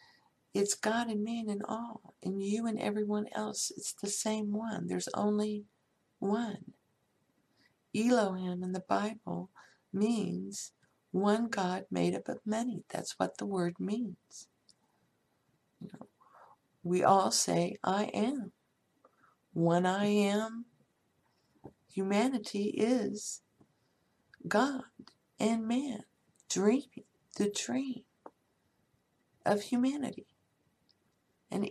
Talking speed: 105 wpm